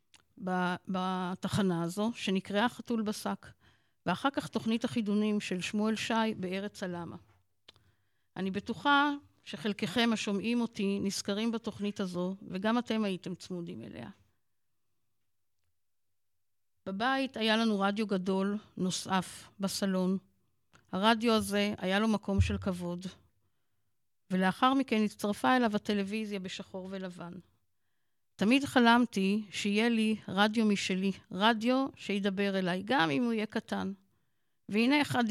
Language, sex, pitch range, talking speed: Hebrew, female, 170-220 Hz, 110 wpm